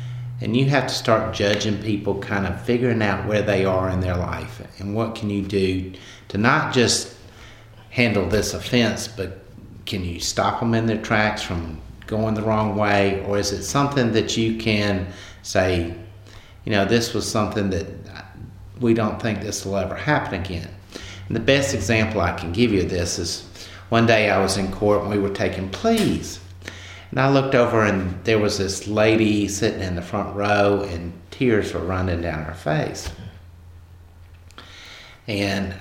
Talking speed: 180 wpm